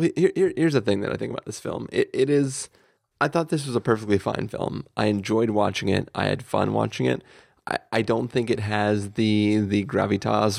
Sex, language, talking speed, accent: male, English, 225 wpm, American